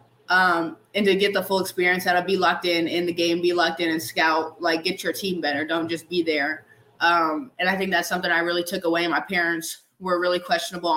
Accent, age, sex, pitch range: American, 20-39, female, 160-180 Hz